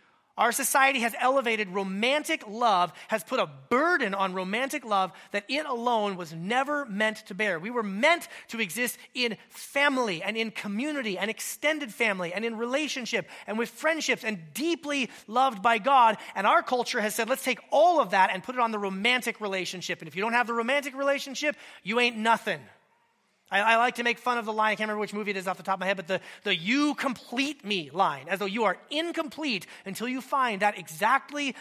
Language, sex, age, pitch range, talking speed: English, male, 30-49, 205-265 Hz, 215 wpm